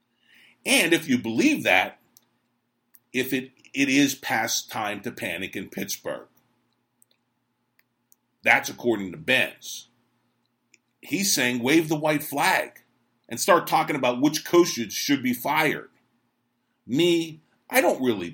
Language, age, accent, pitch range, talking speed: English, 50-69, American, 120-155 Hz, 125 wpm